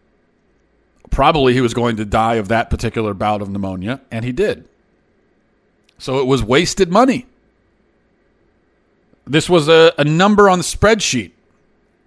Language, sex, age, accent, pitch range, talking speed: English, male, 40-59, American, 105-130 Hz, 140 wpm